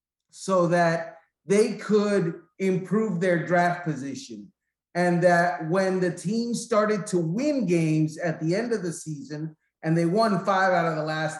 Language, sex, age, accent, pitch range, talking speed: English, male, 40-59, American, 165-215 Hz, 165 wpm